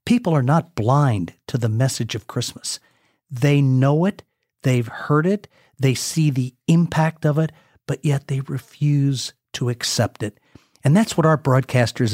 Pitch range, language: 120-155 Hz, English